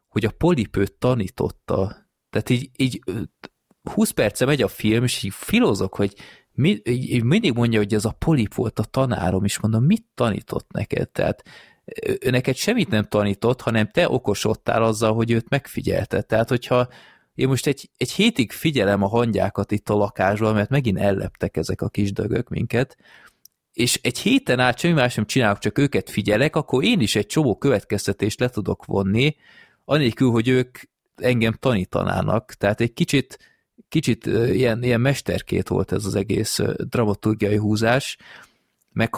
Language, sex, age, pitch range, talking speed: Hungarian, male, 20-39, 105-125 Hz, 160 wpm